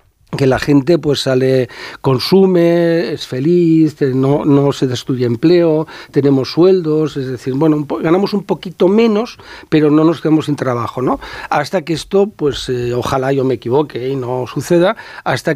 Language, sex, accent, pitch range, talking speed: Spanish, male, Spanish, 135-170 Hz, 170 wpm